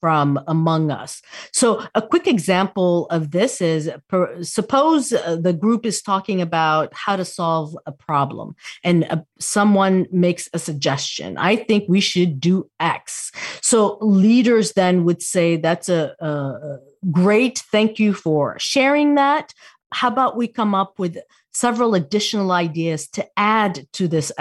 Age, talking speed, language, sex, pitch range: 40-59, 150 wpm, English, female, 165-220 Hz